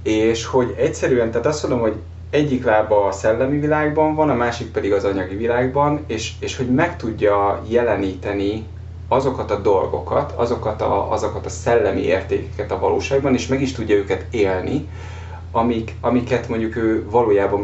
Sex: male